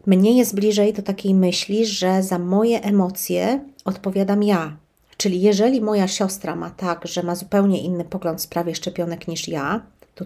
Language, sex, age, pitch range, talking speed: Polish, female, 40-59, 175-215 Hz, 165 wpm